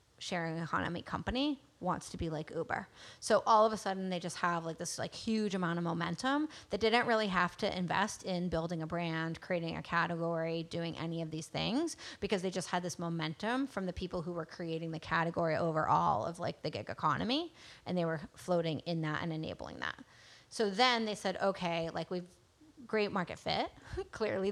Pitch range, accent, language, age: 165-200 Hz, American, English, 30-49